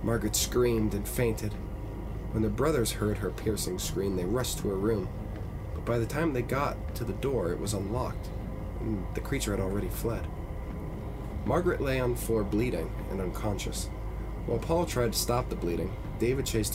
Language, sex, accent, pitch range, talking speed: English, male, American, 95-115 Hz, 185 wpm